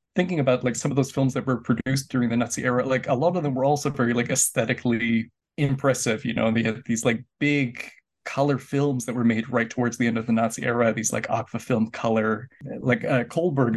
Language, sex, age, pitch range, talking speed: English, male, 20-39, 120-135 Hz, 230 wpm